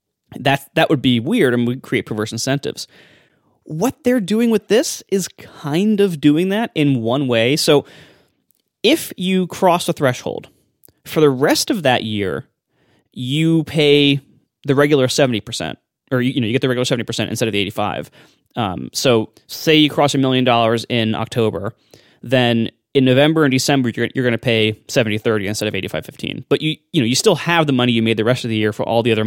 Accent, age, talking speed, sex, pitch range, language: American, 20-39, 210 wpm, male, 115-160 Hz, English